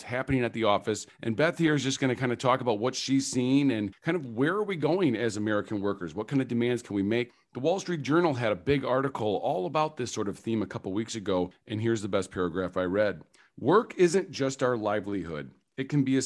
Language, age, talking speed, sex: English, 40-59, 255 wpm, male